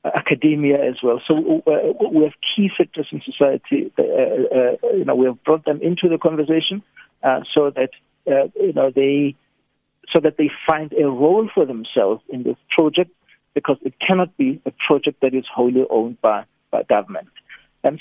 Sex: male